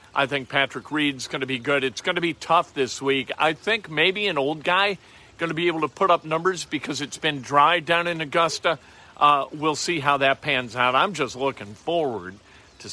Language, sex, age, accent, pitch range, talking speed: English, male, 50-69, American, 135-195 Hz, 225 wpm